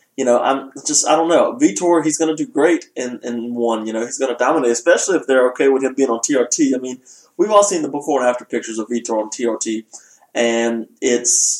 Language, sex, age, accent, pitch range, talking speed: English, male, 20-39, American, 120-150 Hz, 245 wpm